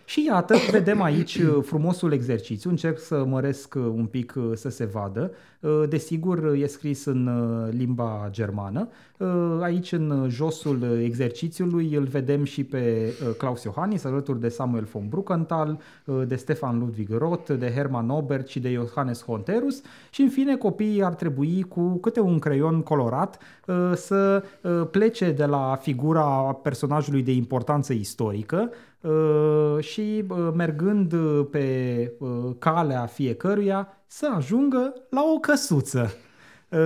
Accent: native